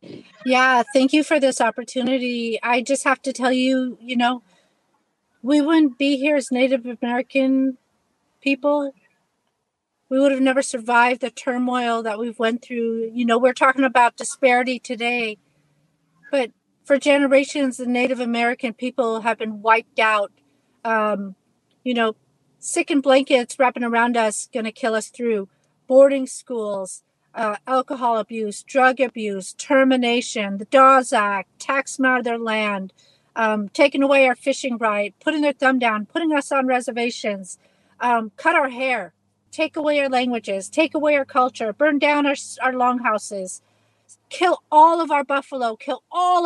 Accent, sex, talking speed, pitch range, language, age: American, female, 155 wpm, 225-275 Hz, English, 40-59